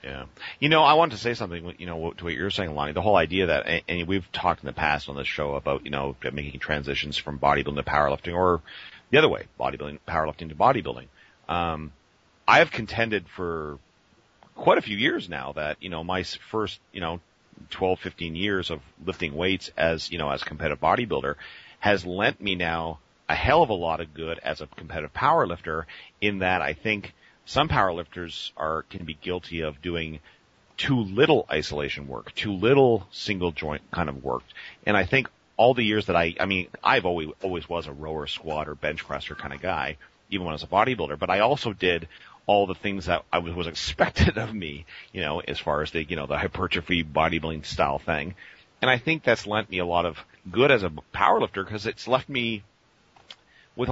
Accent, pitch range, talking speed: American, 75-95 Hz, 205 wpm